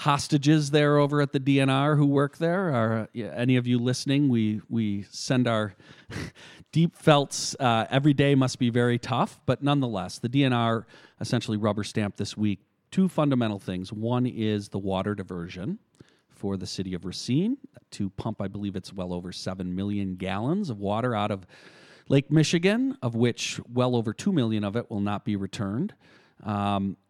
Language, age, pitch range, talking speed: English, 40-59, 100-130 Hz, 175 wpm